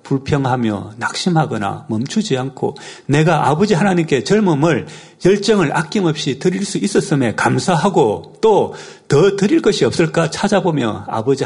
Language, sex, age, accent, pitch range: Korean, male, 40-59, native, 120-170 Hz